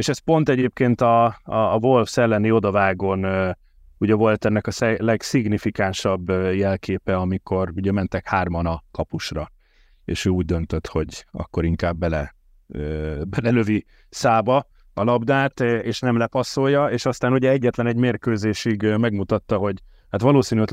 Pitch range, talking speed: 95-120 Hz, 150 wpm